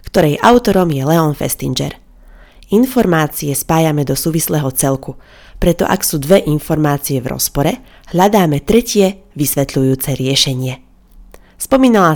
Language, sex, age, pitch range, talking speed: Slovak, female, 30-49, 135-175 Hz, 110 wpm